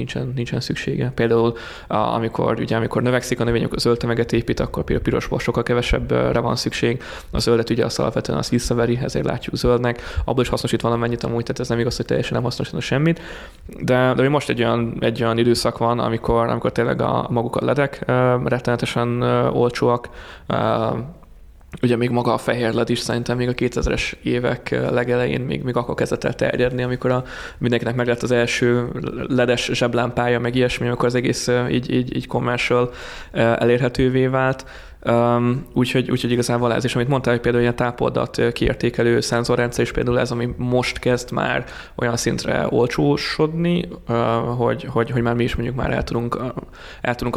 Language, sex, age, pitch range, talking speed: Hungarian, male, 20-39, 115-125 Hz, 175 wpm